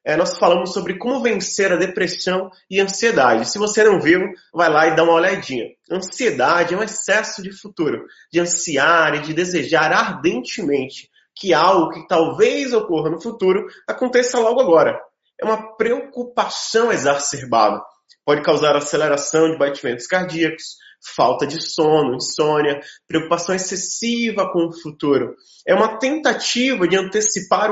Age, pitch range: 20-39, 165-215 Hz